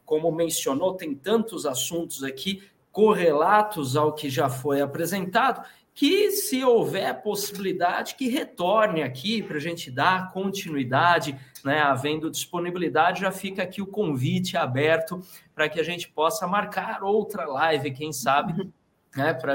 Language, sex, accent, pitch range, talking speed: Portuguese, male, Brazilian, 150-195 Hz, 135 wpm